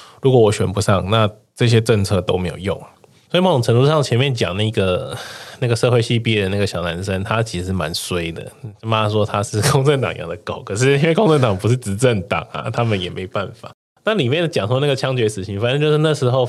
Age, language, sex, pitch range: 20-39, Chinese, male, 95-120 Hz